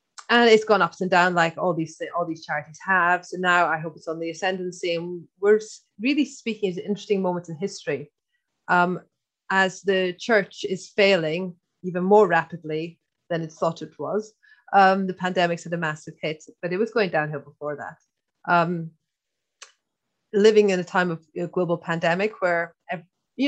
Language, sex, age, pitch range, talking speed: English, female, 30-49, 160-205 Hz, 180 wpm